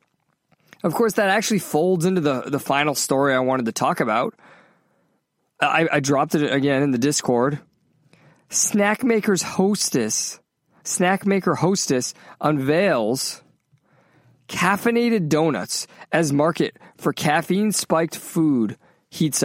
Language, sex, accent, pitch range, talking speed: English, male, American, 125-185 Hz, 115 wpm